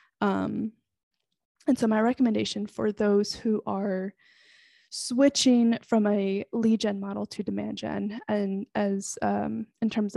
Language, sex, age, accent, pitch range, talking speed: English, female, 20-39, American, 195-235 Hz, 135 wpm